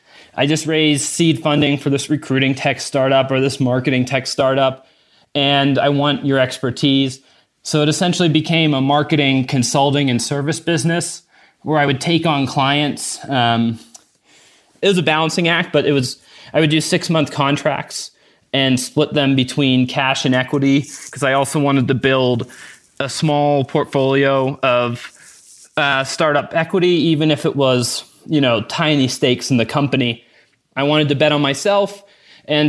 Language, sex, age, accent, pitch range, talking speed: English, male, 20-39, American, 130-155 Hz, 160 wpm